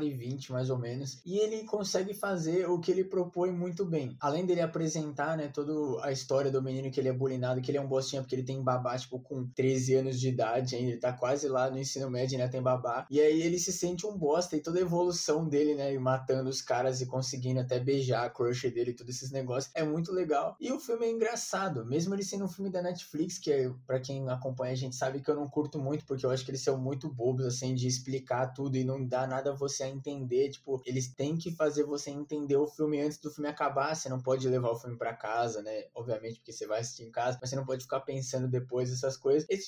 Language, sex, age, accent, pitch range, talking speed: Portuguese, male, 20-39, Brazilian, 125-160 Hz, 255 wpm